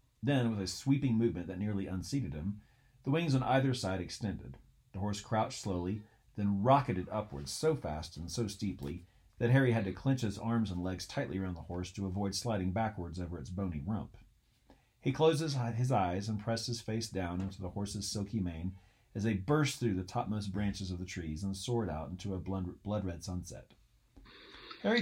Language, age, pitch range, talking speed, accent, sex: English, 40-59, 90-120 Hz, 190 wpm, American, male